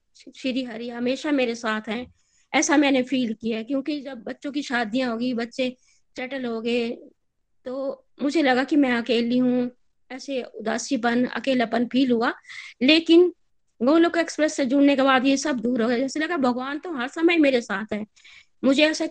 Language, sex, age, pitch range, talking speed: Hindi, female, 20-39, 240-280 Hz, 175 wpm